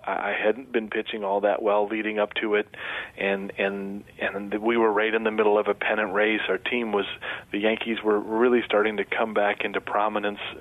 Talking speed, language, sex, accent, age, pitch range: 210 wpm, English, male, American, 40-59, 105-120 Hz